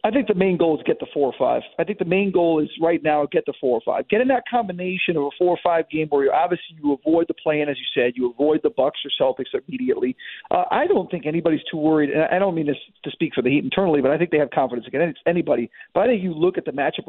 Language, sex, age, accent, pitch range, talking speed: English, male, 40-59, American, 155-205 Hz, 300 wpm